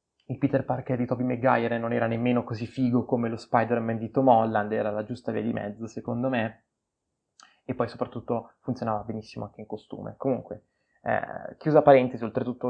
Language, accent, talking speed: Italian, native, 180 wpm